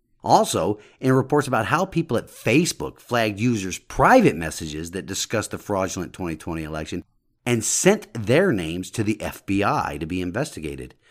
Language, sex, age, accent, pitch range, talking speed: English, male, 50-69, American, 95-125 Hz, 150 wpm